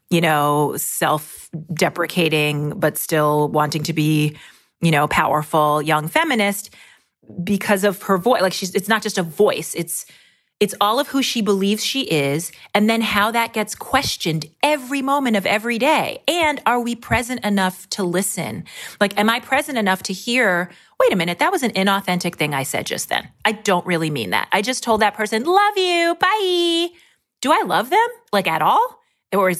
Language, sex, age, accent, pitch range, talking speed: English, female, 30-49, American, 170-235 Hz, 185 wpm